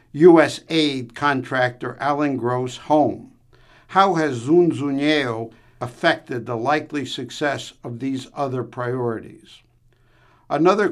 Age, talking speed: 60-79, 95 wpm